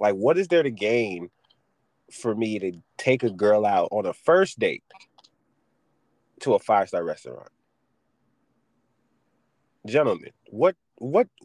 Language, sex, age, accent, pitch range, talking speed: English, male, 30-49, American, 120-195 Hz, 130 wpm